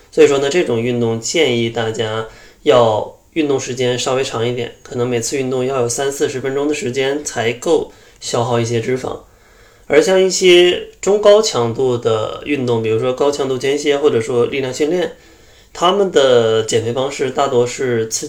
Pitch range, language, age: 120-150 Hz, Chinese, 20-39